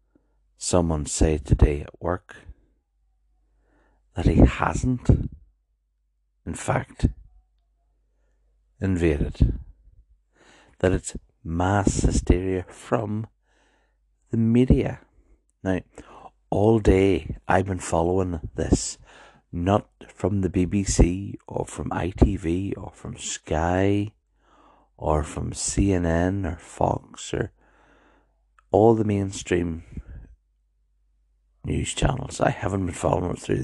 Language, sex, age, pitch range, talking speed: English, male, 60-79, 65-95 Hz, 90 wpm